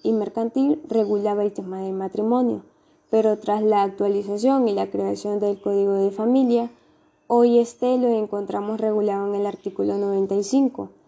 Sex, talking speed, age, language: female, 145 wpm, 20-39, Spanish